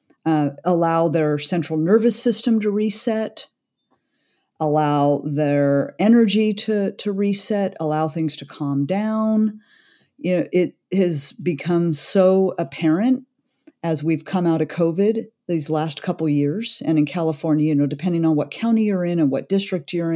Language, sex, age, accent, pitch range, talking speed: English, female, 50-69, American, 155-190 Hz, 150 wpm